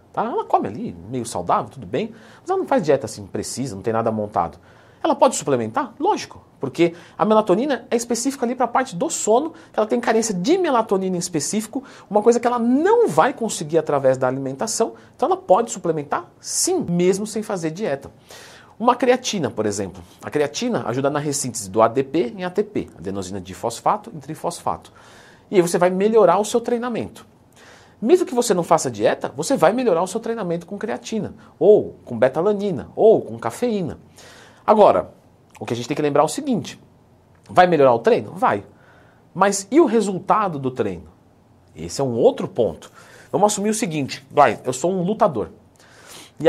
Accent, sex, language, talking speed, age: Brazilian, male, Portuguese, 185 wpm, 40-59